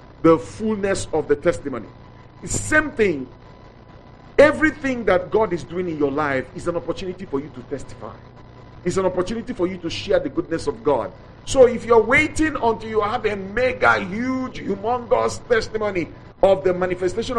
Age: 50-69